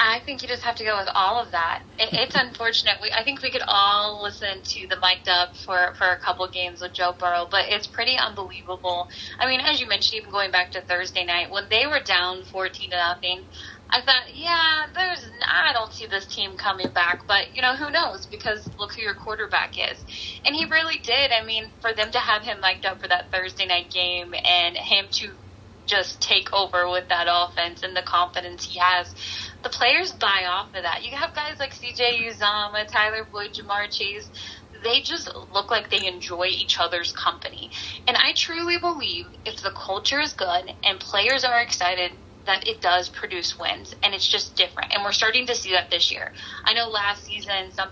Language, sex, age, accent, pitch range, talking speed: English, female, 10-29, American, 185-245 Hz, 210 wpm